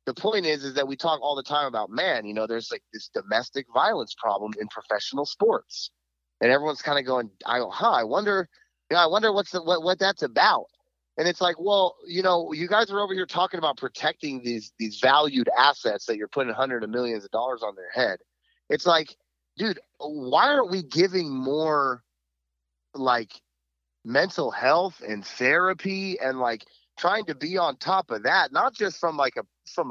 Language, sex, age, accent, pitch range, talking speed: English, male, 30-49, American, 115-180 Hz, 200 wpm